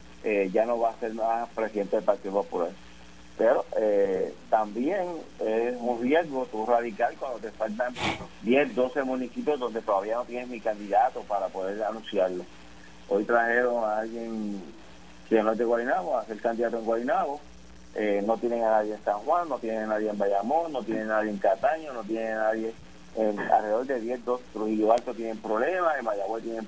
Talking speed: 190 wpm